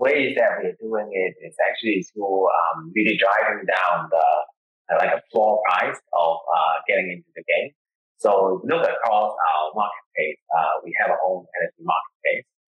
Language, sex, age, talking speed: English, male, 20-39, 175 wpm